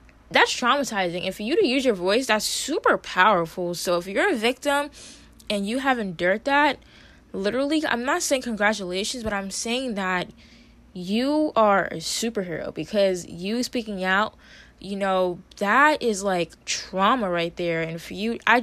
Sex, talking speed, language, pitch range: female, 165 wpm, English, 185-245 Hz